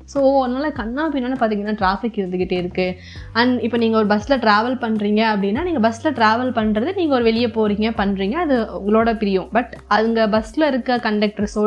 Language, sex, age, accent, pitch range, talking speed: Tamil, female, 20-39, native, 195-255 Hz, 165 wpm